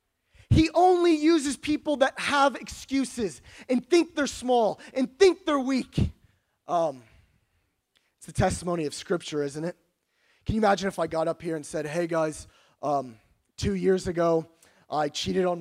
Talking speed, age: 160 wpm, 20-39